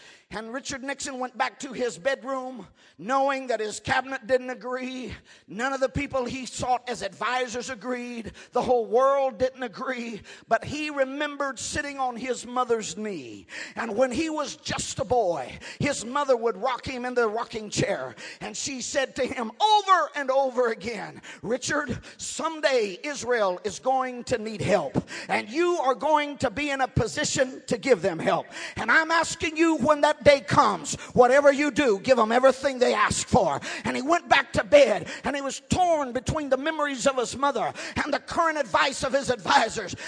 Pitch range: 245-295 Hz